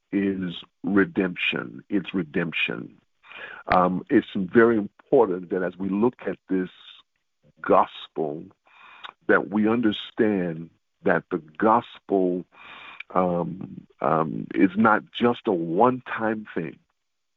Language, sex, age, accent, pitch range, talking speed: English, male, 50-69, American, 90-105 Hz, 100 wpm